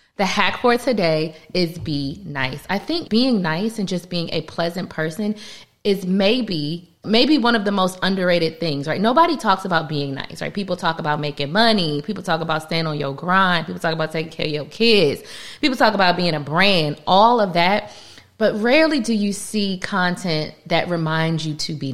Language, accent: English, American